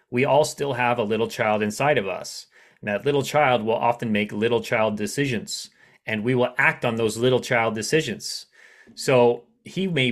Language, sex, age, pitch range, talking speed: English, male, 30-49, 110-125 Hz, 190 wpm